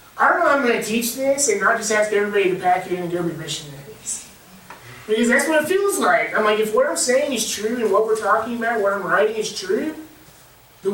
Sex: male